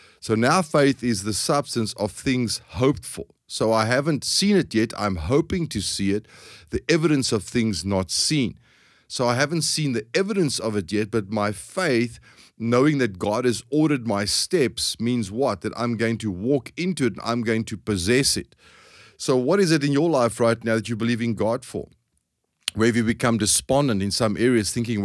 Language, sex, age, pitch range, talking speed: English, male, 30-49, 100-125 Hz, 205 wpm